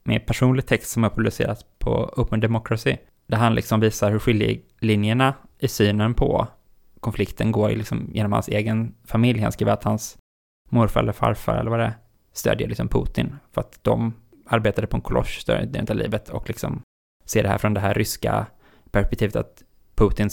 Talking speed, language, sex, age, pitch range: 185 wpm, Swedish, male, 20-39, 105-115 Hz